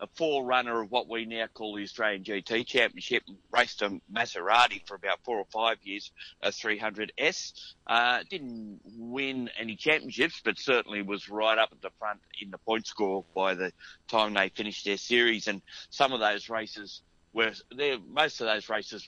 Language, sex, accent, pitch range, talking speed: English, male, Australian, 100-115 Hz, 175 wpm